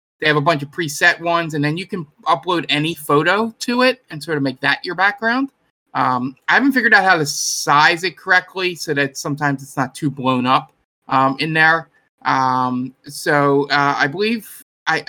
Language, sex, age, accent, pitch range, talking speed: English, male, 20-39, American, 135-175 Hz, 200 wpm